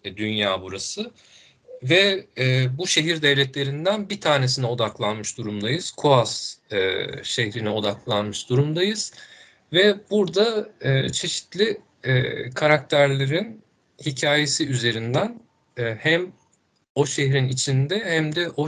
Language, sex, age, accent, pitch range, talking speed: Turkish, male, 50-69, native, 125-160 Hz, 105 wpm